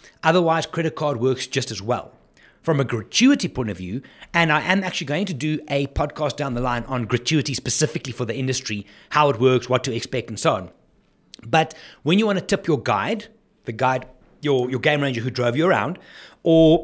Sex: male